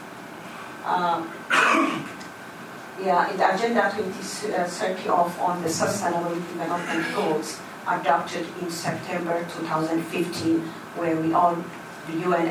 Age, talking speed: 40-59, 105 wpm